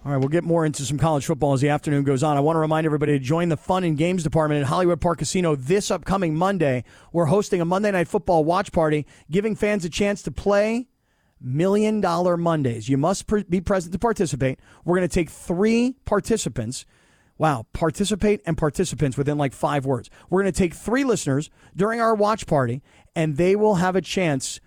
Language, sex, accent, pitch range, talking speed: English, male, American, 155-205 Hz, 210 wpm